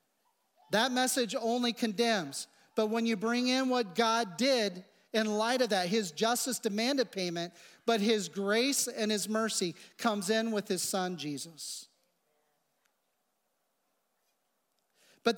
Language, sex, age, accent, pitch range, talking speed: English, male, 40-59, American, 210-260 Hz, 130 wpm